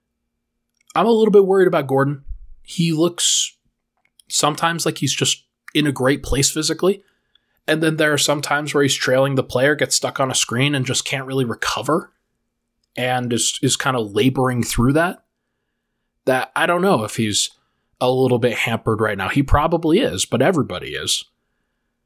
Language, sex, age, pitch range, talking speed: English, male, 20-39, 125-165 Hz, 175 wpm